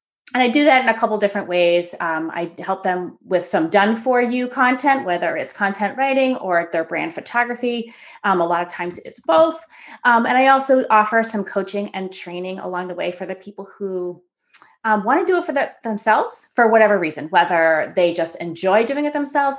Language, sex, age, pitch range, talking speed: English, female, 30-49, 180-230 Hz, 210 wpm